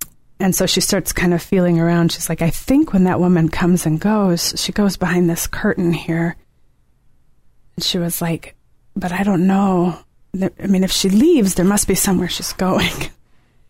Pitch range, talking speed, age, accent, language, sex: 170-190 Hz, 190 wpm, 30-49, American, English, female